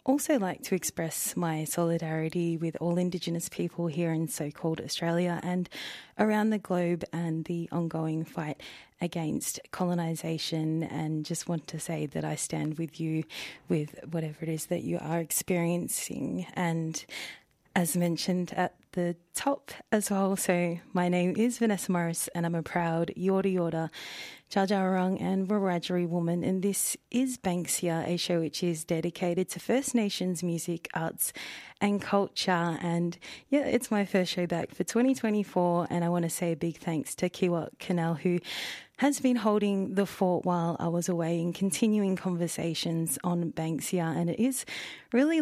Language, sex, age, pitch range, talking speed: English, female, 30-49, 170-195 Hz, 160 wpm